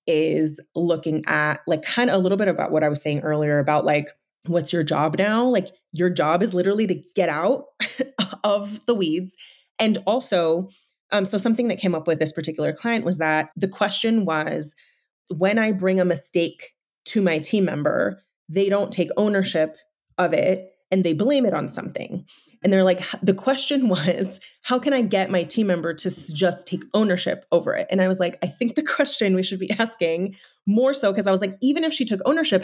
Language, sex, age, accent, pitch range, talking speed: English, female, 30-49, American, 175-225 Hz, 205 wpm